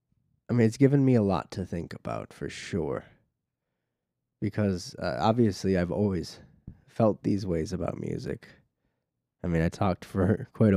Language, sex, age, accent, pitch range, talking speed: English, male, 20-39, American, 85-105 Hz, 155 wpm